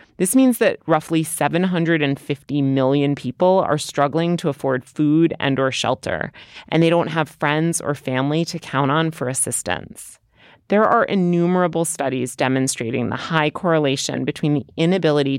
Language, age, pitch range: English, 30-49, 140-170 Hz